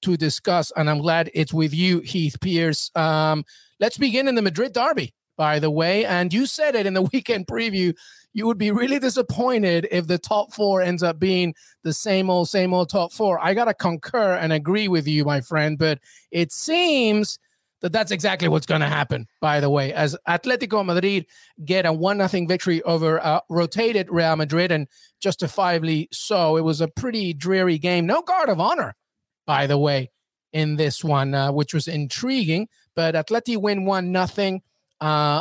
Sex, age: male, 30-49